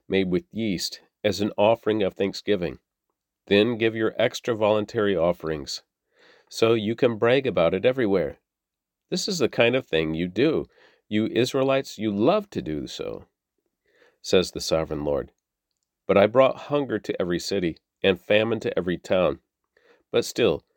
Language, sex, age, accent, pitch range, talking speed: English, male, 40-59, American, 95-120 Hz, 155 wpm